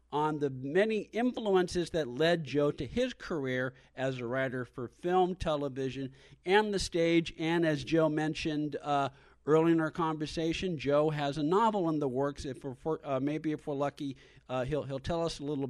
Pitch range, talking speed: 140-180 Hz, 190 wpm